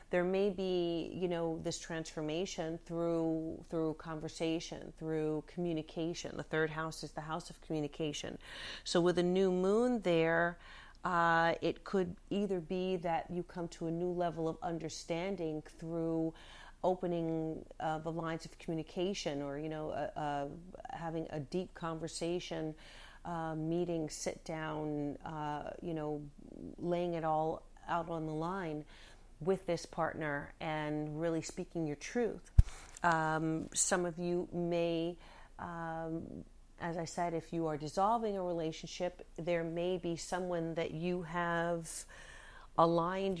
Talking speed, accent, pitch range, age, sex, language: 140 wpm, American, 160-175 Hz, 40-59, female, English